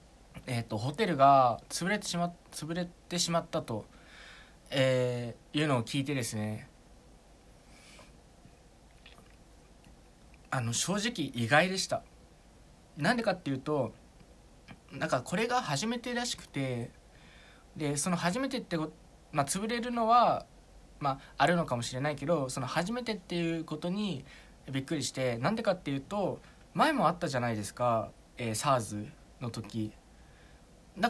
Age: 20-39